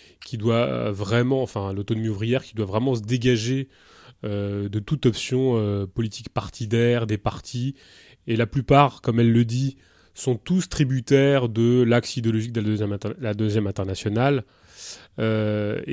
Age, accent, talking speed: 20-39, French, 145 wpm